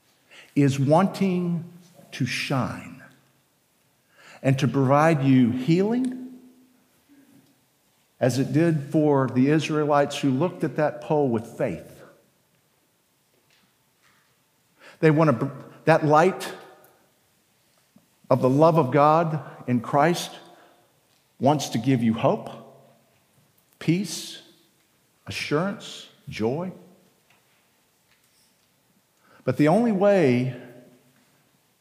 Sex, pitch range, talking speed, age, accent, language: male, 125-160 Hz, 90 wpm, 50-69, American, English